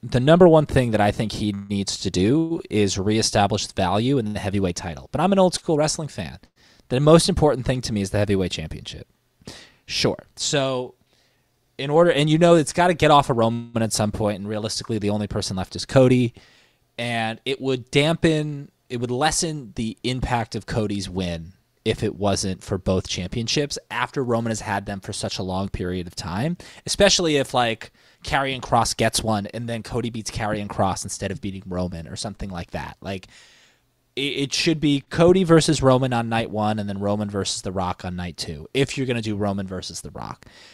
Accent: American